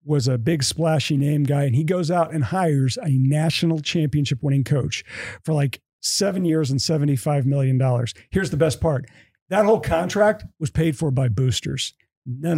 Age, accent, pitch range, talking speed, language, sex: 40-59, American, 140-210 Hz, 175 wpm, English, male